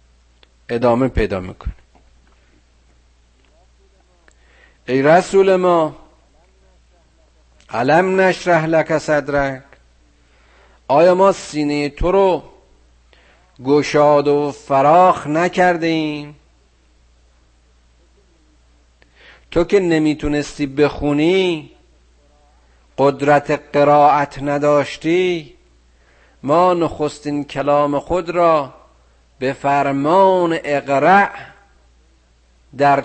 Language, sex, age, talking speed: Persian, male, 50-69, 65 wpm